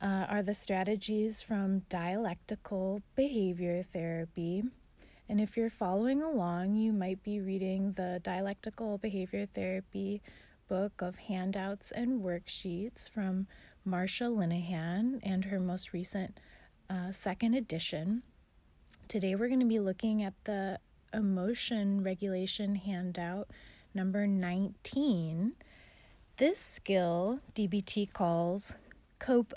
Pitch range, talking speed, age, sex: 185-225 Hz, 110 wpm, 30-49, female